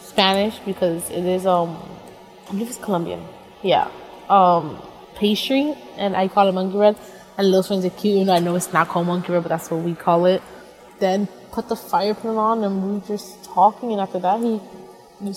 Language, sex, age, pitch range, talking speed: English, female, 20-39, 180-215 Hz, 205 wpm